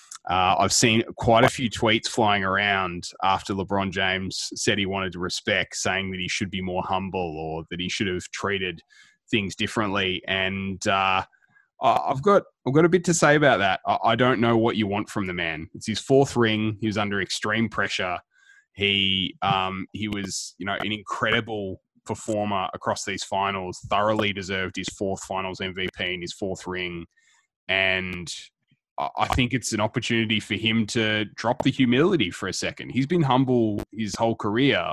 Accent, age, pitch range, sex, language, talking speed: Australian, 20-39, 95-115 Hz, male, English, 180 wpm